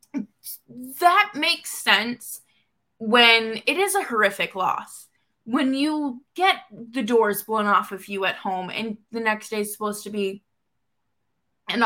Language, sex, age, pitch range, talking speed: English, female, 20-39, 210-285 Hz, 145 wpm